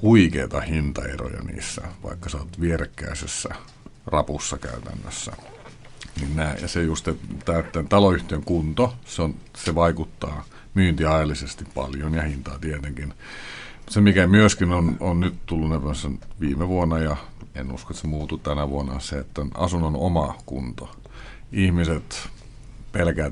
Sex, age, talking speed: male, 50-69, 135 wpm